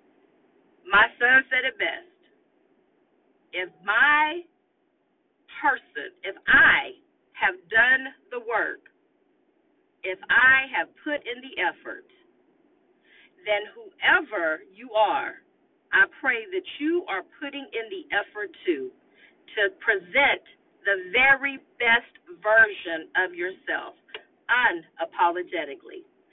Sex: female